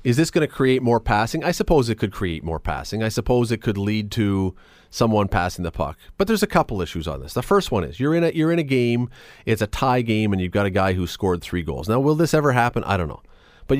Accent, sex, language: American, male, English